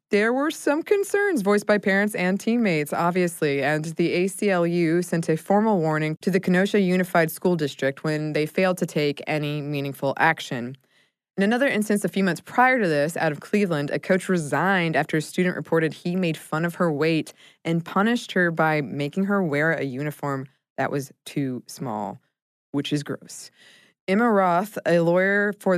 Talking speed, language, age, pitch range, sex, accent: 180 wpm, English, 20-39, 150-190 Hz, female, American